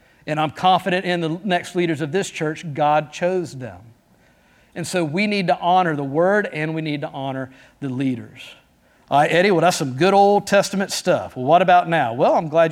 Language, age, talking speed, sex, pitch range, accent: English, 50-69, 210 wpm, male, 165-230 Hz, American